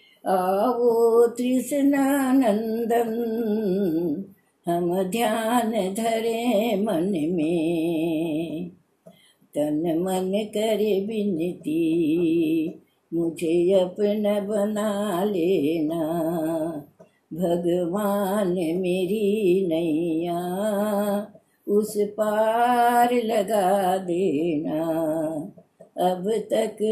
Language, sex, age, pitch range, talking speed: Hindi, female, 60-79, 185-240 Hz, 55 wpm